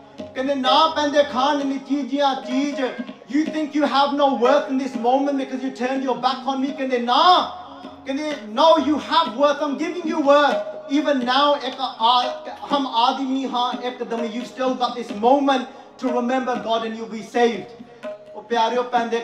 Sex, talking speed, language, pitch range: male, 190 wpm, English, 235-285 Hz